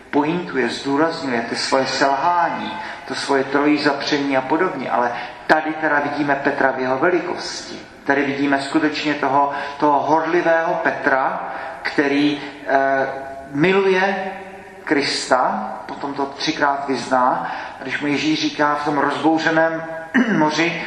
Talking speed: 120 wpm